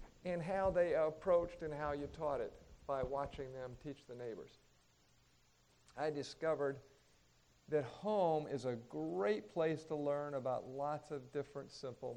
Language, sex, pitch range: English, male, 130-180 Hz